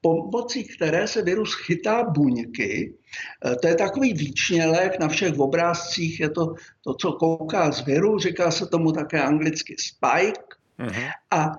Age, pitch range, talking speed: 60-79, 160-240 Hz, 140 wpm